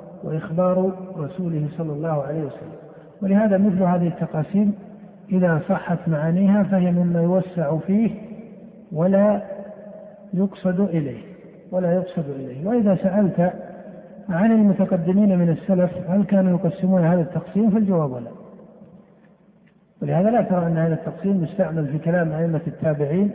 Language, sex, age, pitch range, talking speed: Arabic, male, 60-79, 165-195 Hz, 120 wpm